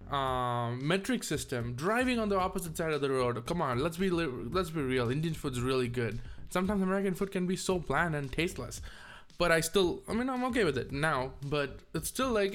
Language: English